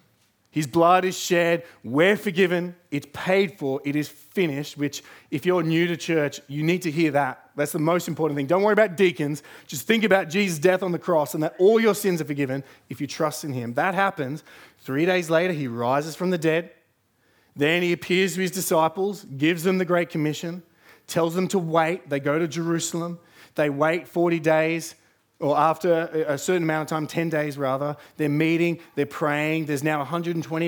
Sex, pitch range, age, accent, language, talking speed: male, 140-175 Hz, 20-39, Australian, English, 200 wpm